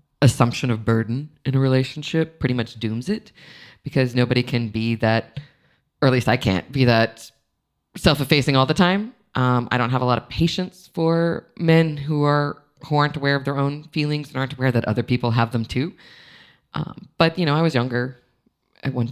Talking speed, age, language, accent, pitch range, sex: 205 wpm, 20-39, English, American, 120-150 Hz, female